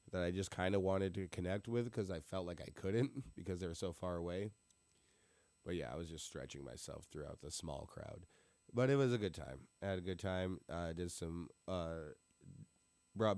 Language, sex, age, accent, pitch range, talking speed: English, male, 20-39, American, 85-100 Hz, 220 wpm